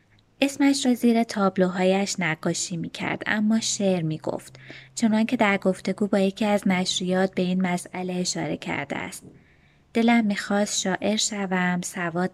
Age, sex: 20-39, female